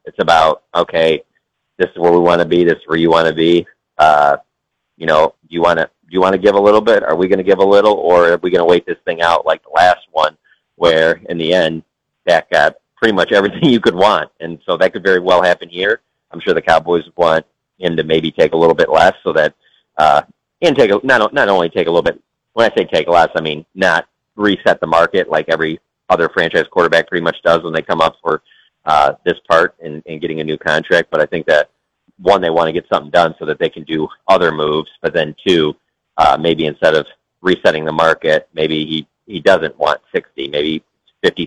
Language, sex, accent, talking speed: English, male, American, 245 wpm